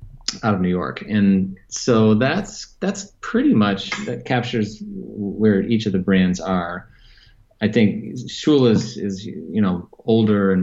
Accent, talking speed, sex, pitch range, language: American, 150 wpm, male, 95-115 Hz, English